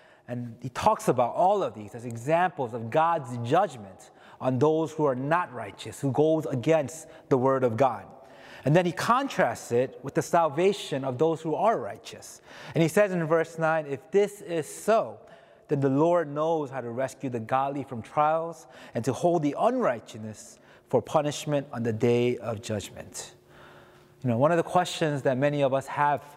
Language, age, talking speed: English, 30-49, 185 wpm